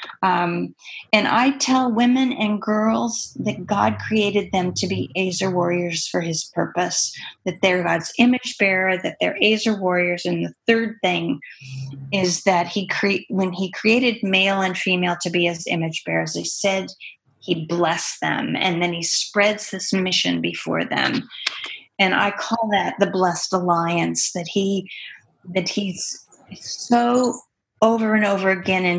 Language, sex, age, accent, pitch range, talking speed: English, female, 30-49, American, 175-205 Hz, 155 wpm